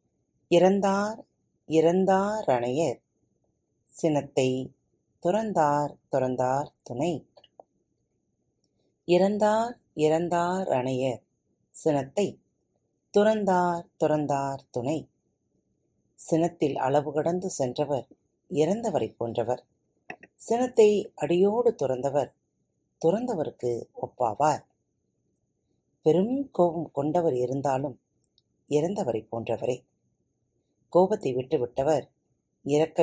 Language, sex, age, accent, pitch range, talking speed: Tamil, female, 30-49, native, 125-180 Hz, 50 wpm